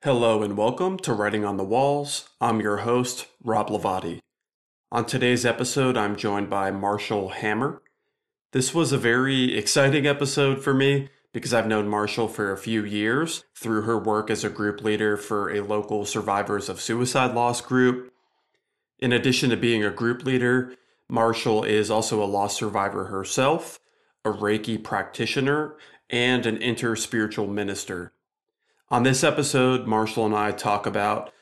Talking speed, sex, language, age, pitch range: 155 wpm, male, English, 30-49, 105-125 Hz